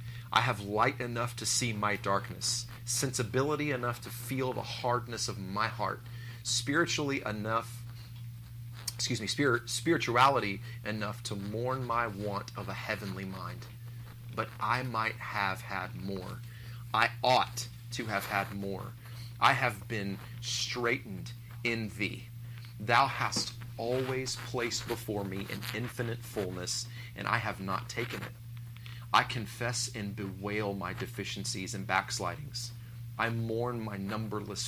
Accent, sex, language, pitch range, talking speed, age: American, male, English, 105-120 Hz, 135 wpm, 30-49